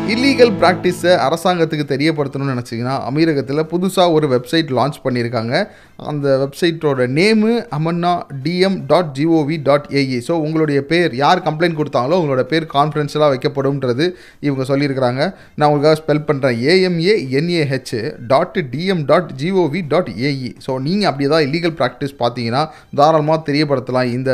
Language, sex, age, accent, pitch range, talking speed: Tamil, male, 30-49, native, 135-175 Hz, 135 wpm